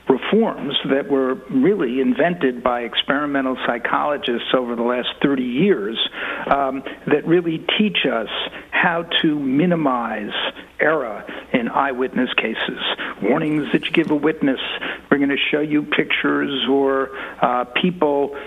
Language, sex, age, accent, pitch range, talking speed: English, male, 60-79, American, 130-160 Hz, 130 wpm